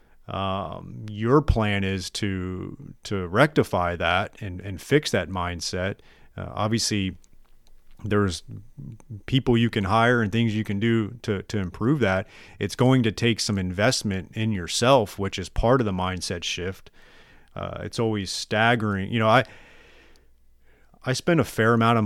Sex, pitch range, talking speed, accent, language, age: male, 95-110 Hz, 155 wpm, American, English, 30-49